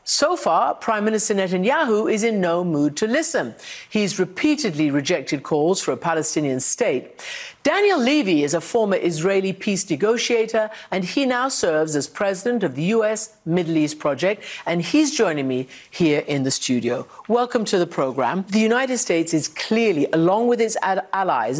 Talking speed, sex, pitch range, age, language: 165 wpm, female, 155-220 Hz, 50-69, English